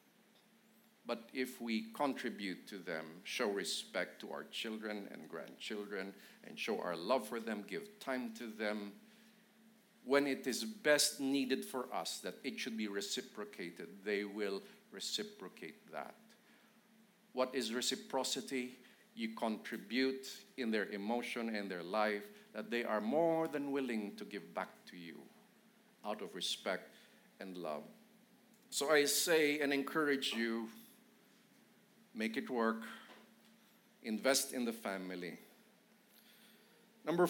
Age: 50-69